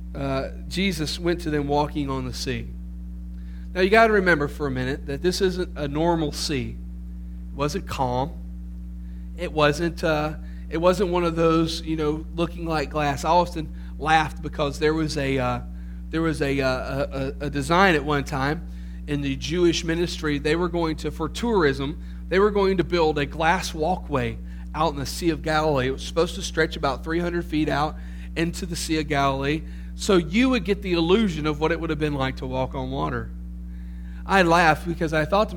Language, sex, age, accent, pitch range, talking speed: English, male, 40-59, American, 135-175 Hz, 200 wpm